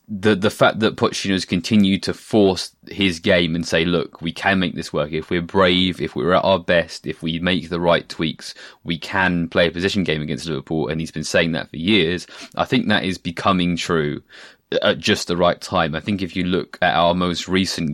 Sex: male